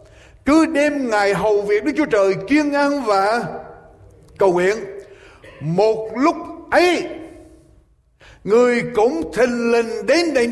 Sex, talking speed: male, 125 wpm